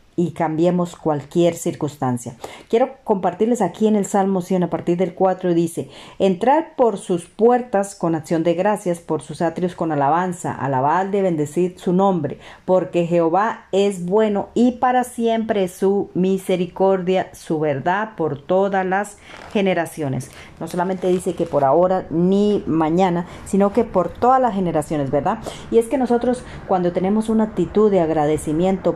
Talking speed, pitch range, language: 155 wpm, 165-200 Hz, Spanish